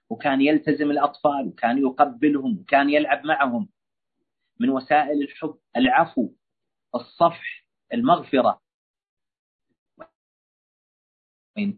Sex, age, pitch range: male, 40-59, 145-195 Hz